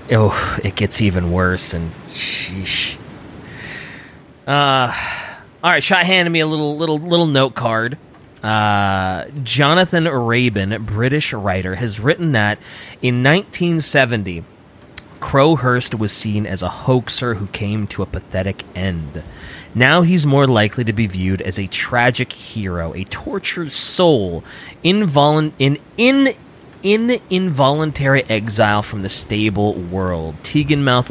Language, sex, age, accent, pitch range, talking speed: English, male, 30-49, American, 100-140 Hz, 130 wpm